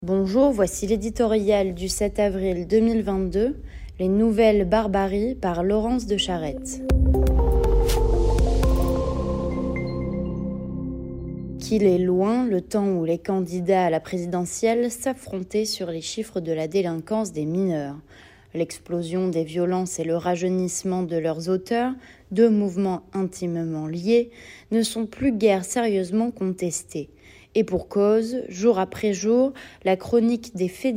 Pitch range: 170-215 Hz